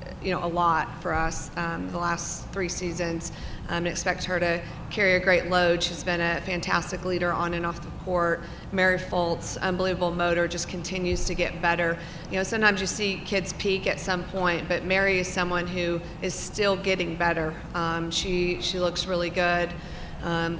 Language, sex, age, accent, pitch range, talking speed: English, female, 40-59, American, 175-185 Hz, 185 wpm